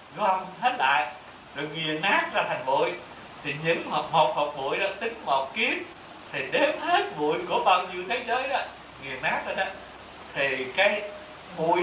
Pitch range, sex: 145-205 Hz, male